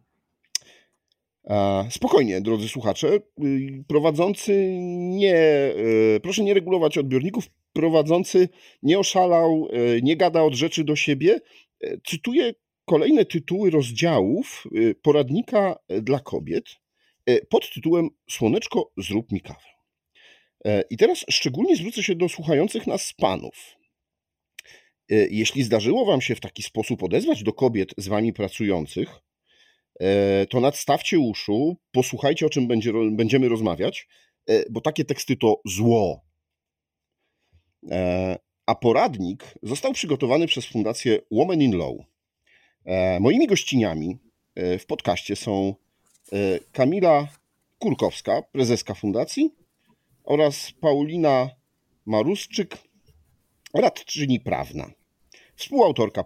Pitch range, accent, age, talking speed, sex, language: 105-170 Hz, native, 40-59, 95 wpm, male, Polish